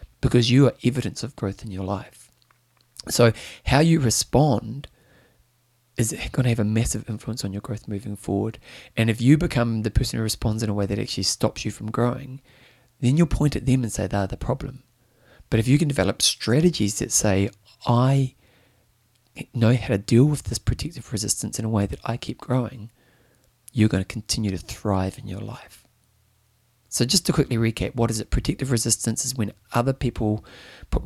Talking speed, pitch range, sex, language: 195 wpm, 105-125 Hz, male, English